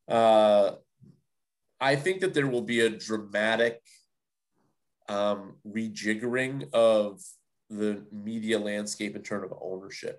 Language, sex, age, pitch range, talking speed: English, male, 30-49, 105-120 Hz, 110 wpm